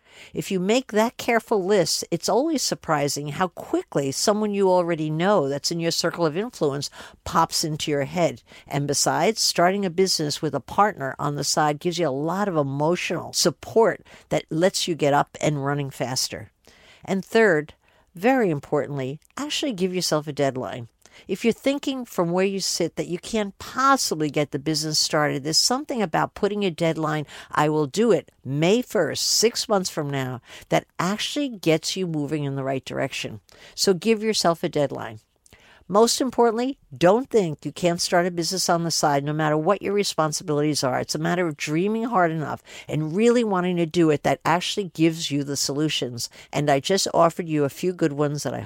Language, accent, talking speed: English, American, 190 wpm